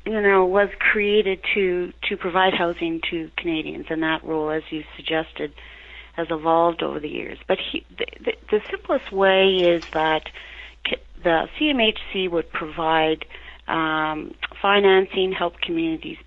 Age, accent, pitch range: 40-59, American, 160-195 Hz